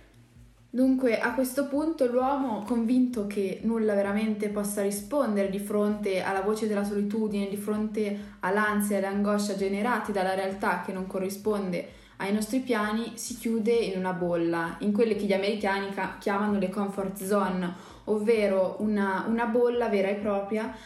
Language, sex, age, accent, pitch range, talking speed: Italian, female, 20-39, native, 195-225 Hz, 150 wpm